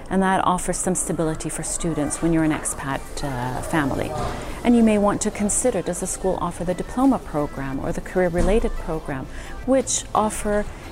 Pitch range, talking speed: 155-195 Hz, 175 wpm